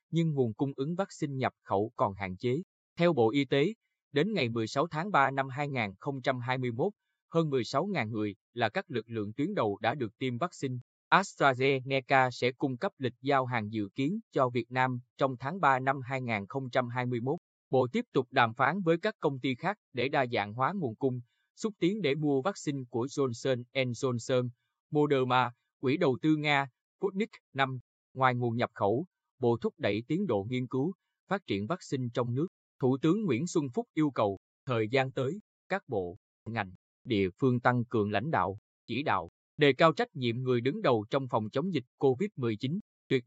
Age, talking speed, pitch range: 20-39, 185 wpm, 120-160 Hz